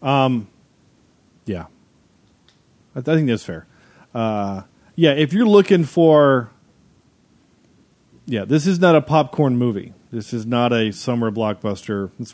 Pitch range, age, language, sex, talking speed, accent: 110-145 Hz, 40-59, English, male, 130 wpm, American